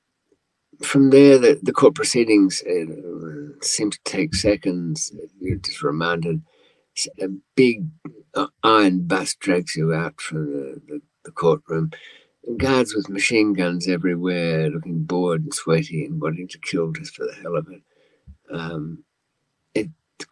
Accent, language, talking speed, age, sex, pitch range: British, English, 140 wpm, 50-69, male, 85-145 Hz